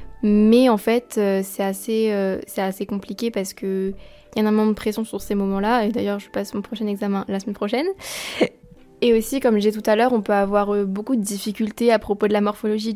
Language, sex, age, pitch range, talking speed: French, female, 20-39, 205-230 Hz, 230 wpm